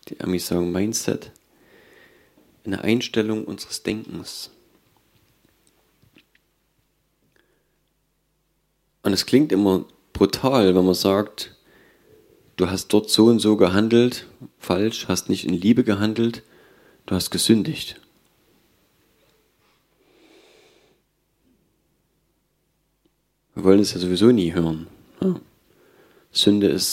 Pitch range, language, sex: 90-115 Hz, German, male